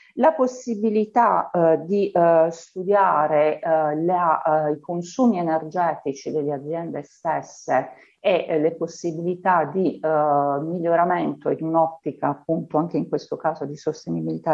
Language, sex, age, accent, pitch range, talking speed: Italian, female, 50-69, native, 155-195 Hz, 100 wpm